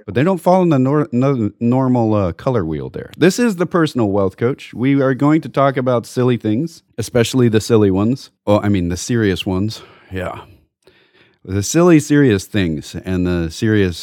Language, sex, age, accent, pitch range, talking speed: English, male, 40-59, American, 90-125 Hz, 195 wpm